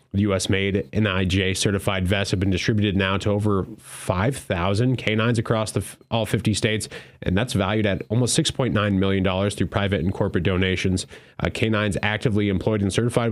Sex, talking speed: male, 170 wpm